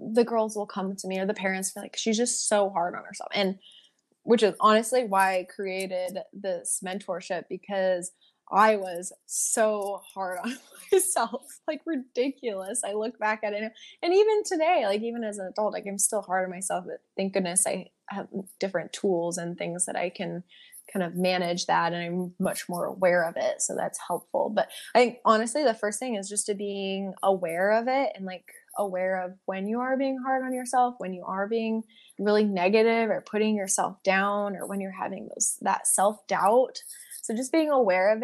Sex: female